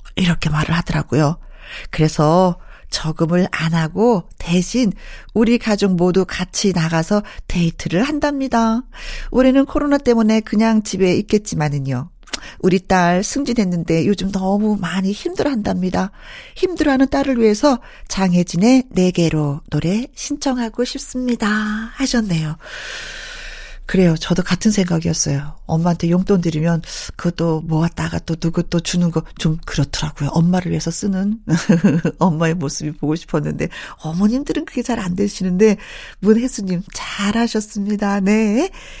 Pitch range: 175-245 Hz